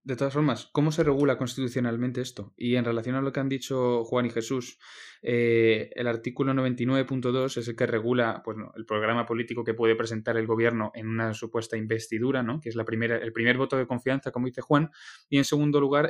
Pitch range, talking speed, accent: 120-145 Hz, 215 wpm, Spanish